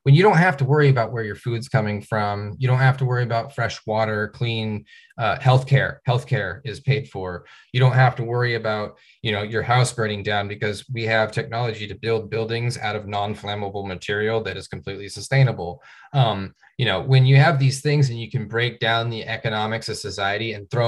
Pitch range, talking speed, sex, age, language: 110-135 Hz, 210 wpm, male, 20-39, English